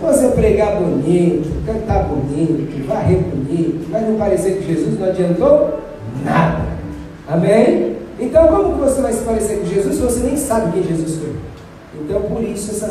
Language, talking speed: Portuguese, 165 wpm